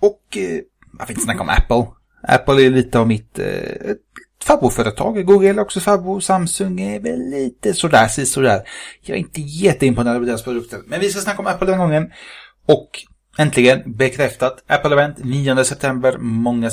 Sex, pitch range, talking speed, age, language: male, 120-165 Hz, 170 wpm, 30-49, English